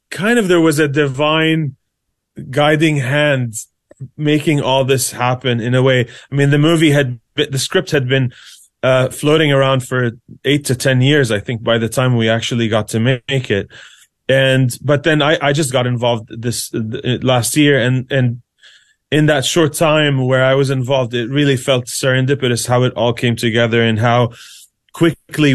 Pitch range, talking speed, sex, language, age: 125-145 Hz, 185 wpm, male, English, 30-49